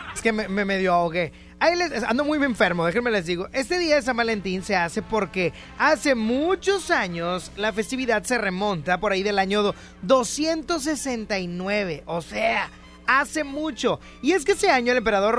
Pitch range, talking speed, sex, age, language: 210-290 Hz, 170 wpm, male, 30-49, Spanish